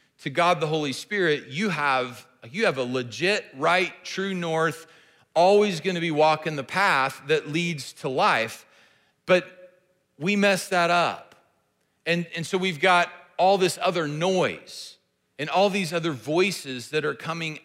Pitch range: 140-180 Hz